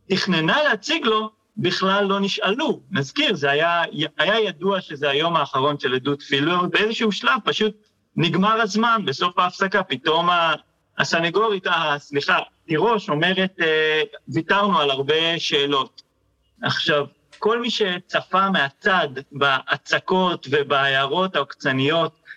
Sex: male